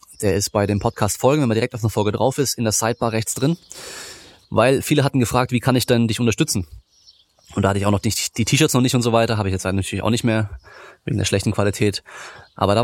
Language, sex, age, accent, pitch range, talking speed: German, male, 20-39, German, 110-125 Hz, 255 wpm